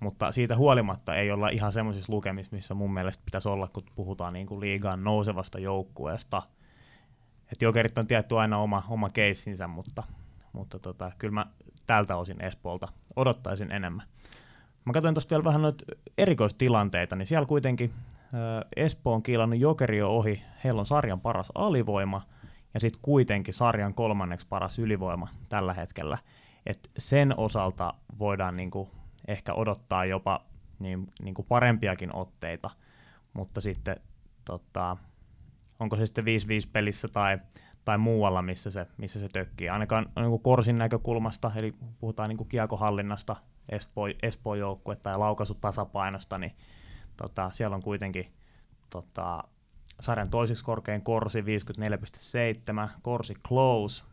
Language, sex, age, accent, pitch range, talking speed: Finnish, male, 20-39, native, 95-115 Hz, 135 wpm